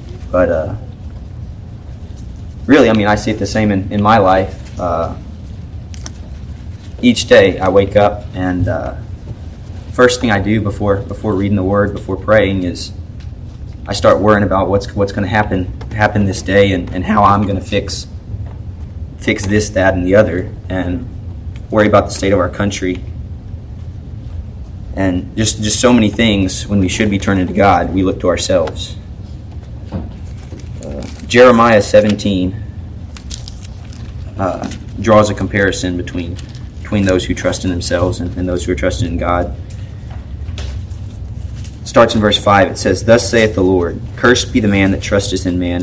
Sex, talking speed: male, 160 wpm